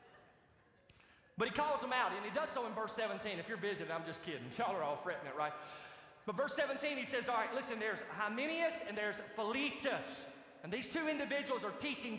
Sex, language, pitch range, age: male, English, 190-240 Hz, 30-49